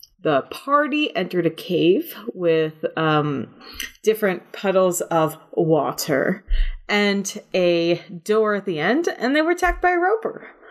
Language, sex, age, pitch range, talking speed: English, female, 30-49, 165-230 Hz, 135 wpm